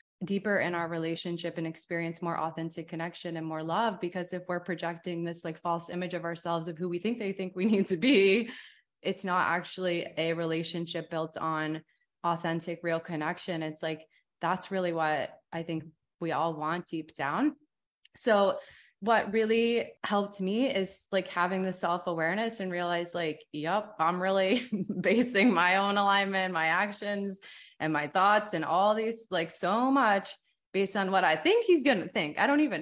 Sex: female